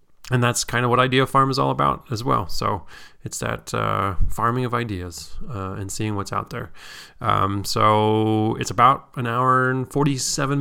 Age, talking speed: 20-39, 185 wpm